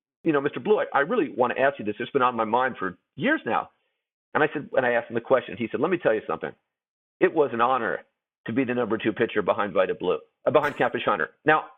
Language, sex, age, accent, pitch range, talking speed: English, male, 50-69, American, 130-205 Hz, 275 wpm